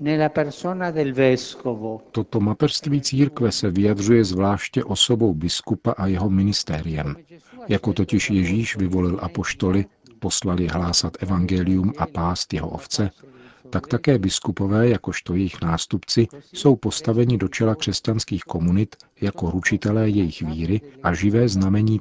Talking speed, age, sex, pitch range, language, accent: 115 wpm, 50-69, male, 90-120 Hz, Czech, native